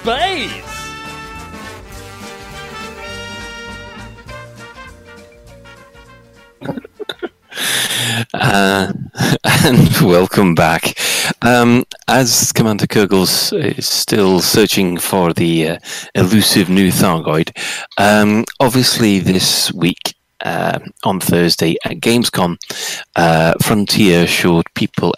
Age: 40-59